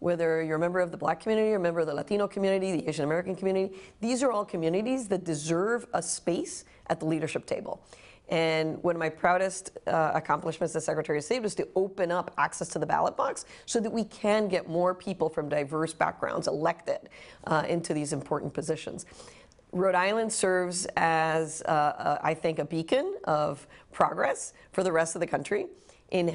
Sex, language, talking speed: female, English, 195 wpm